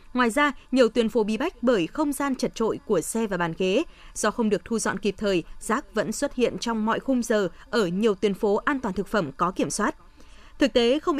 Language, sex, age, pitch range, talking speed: Vietnamese, female, 20-39, 185-255 Hz, 245 wpm